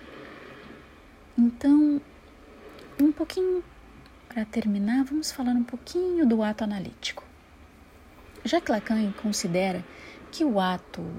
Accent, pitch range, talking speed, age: Brazilian, 185-250 Hz, 95 wpm, 40-59